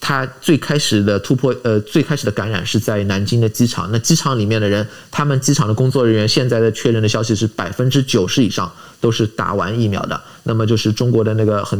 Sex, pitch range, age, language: male, 110-130 Hz, 20-39, Chinese